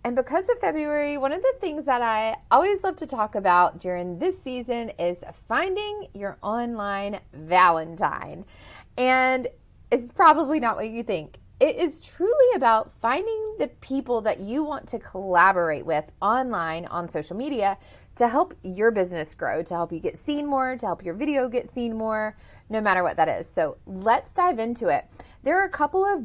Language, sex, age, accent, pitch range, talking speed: English, female, 30-49, American, 180-290 Hz, 185 wpm